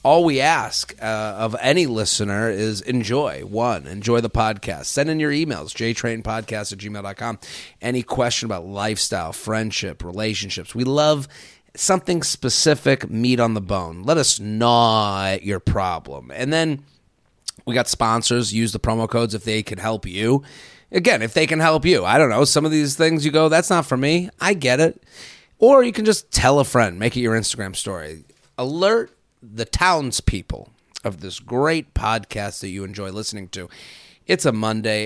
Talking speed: 175 wpm